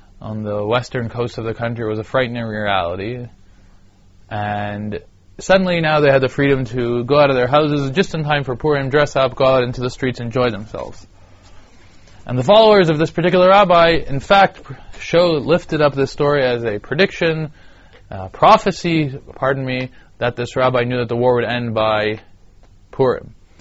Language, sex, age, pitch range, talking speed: English, male, 20-39, 95-135 Hz, 175 wpm